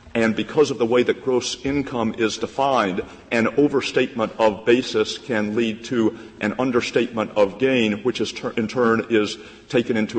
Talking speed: 160 wpm